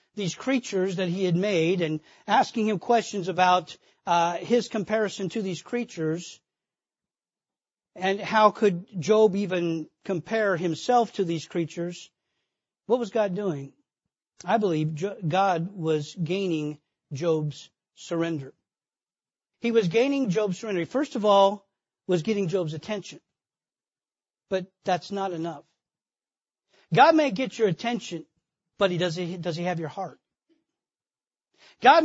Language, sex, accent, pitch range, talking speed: English, male, American, 170-215 Hz, 125 wpm